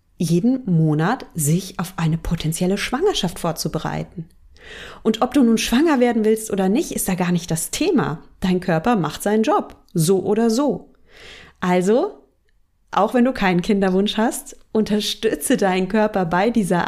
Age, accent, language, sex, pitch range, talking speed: 30-49, German, German, female, 180-225 Hz, 155 wpm